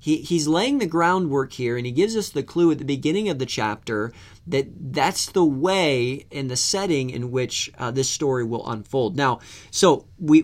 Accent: American